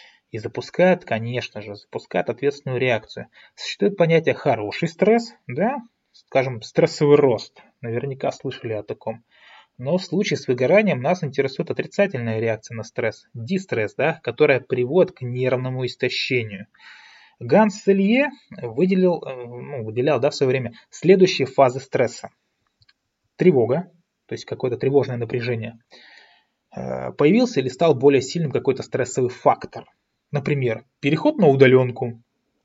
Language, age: Russian, 20-39